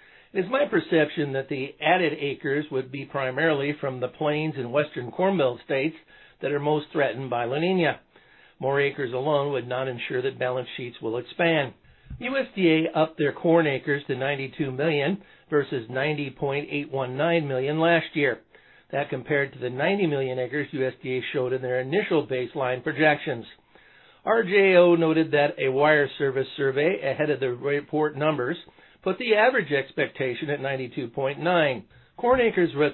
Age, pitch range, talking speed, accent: 60-79, 130-165 Hz, 155 wpm, American